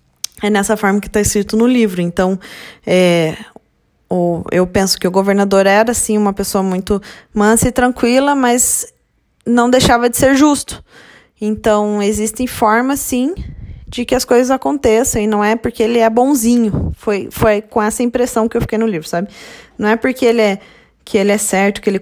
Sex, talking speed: female, 175 wpm